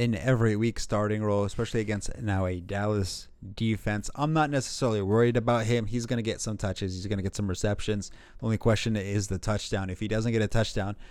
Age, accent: 30-49, American